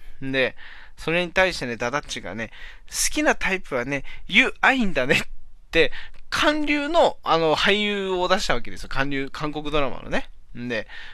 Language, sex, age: Japanese, male, 20-39